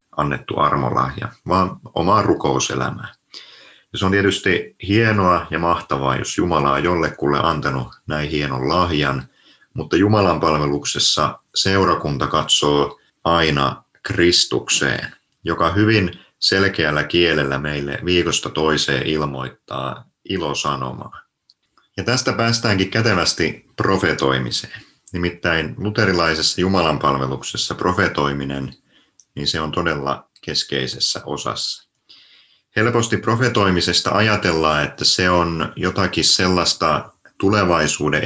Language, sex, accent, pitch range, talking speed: Finnish, male, native, 70-90 Hz, 95 wpm